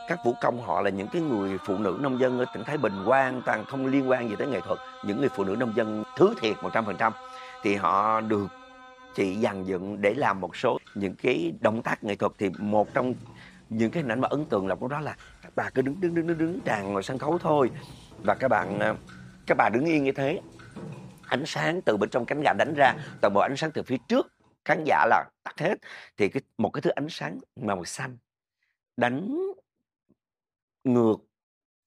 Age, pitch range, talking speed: 50-69, 105-150 Hz, 220 wpm